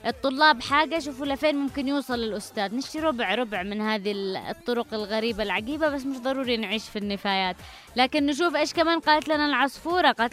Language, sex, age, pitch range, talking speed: English, female, 20-39, 235-290 Hz, 170 wpm